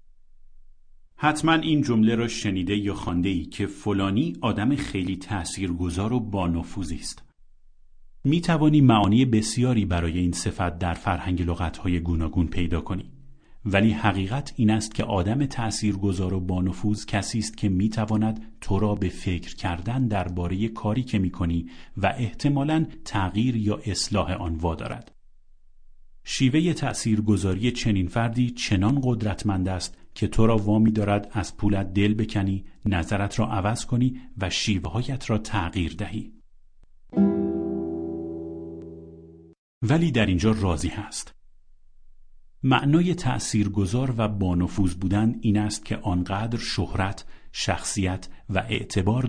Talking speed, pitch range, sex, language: 125 wpm, 90-110 Hz, male, Persian